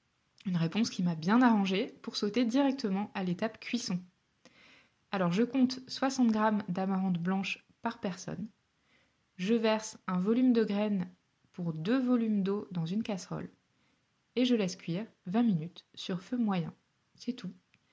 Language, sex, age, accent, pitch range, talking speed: French, female, 20-39, French, 180-230 Hz, 150 wpm